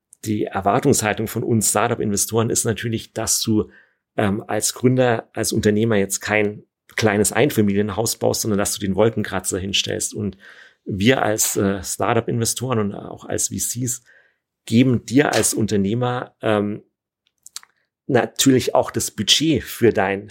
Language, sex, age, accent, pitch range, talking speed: German, male, 50-69, German, 105-120 Hz, 135 wpm